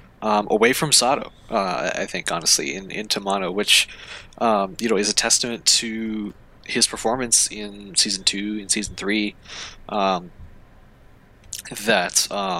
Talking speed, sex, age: 140 wpm, male, 20-39